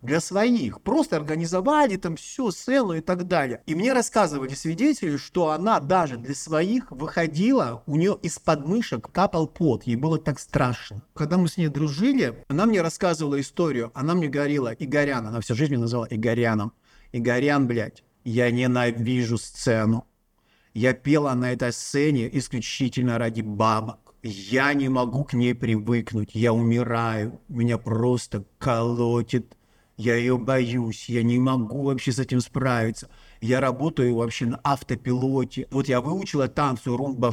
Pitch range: 120-160 Hz